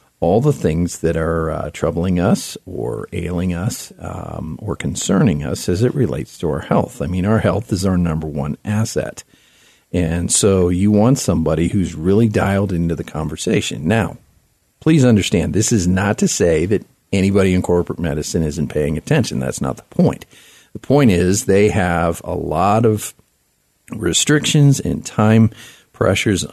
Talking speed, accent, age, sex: 165 wpm, American, 50-69, male